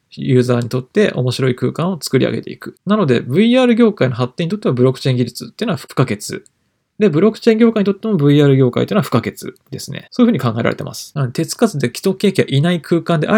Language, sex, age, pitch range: Japanese, male, 20-39, 125-190 Hz